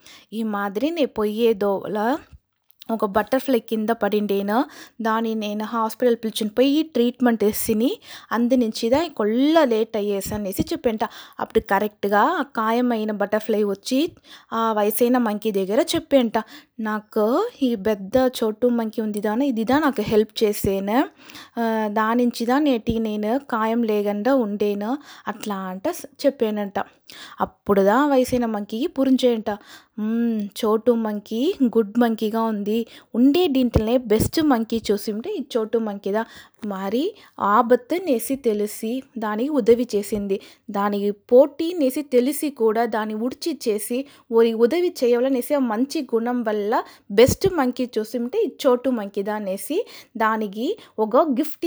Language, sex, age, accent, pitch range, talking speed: Telugu, female, 20-39, native, 215-270 Hz, 115 wpm